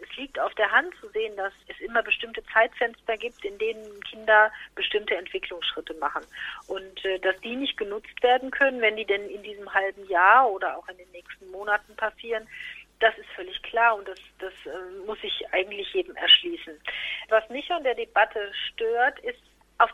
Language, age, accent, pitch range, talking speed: German, 40-59, German, 205-275 Hz, 185 wpm